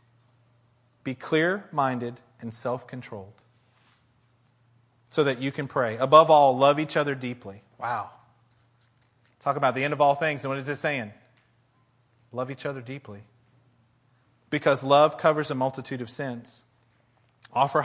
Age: 30-49